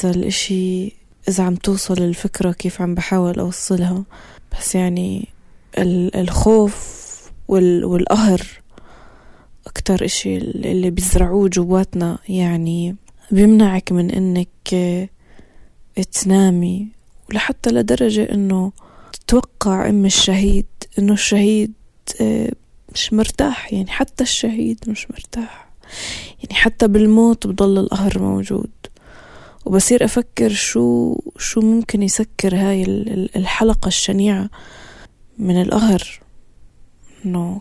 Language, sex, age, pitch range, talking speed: Arabic, female, 20-39, 180-205 Hz, 95 wpm